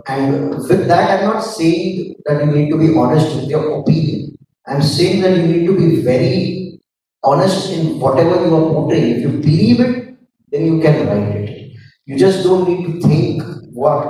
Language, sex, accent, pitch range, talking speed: English, male, Indian, 130-160 Hz, 190 wpm